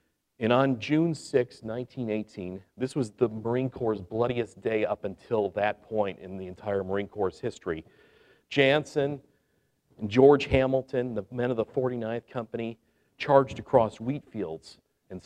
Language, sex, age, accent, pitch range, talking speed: English, male, 40-59, American, 100-125 Hz, 145 wpm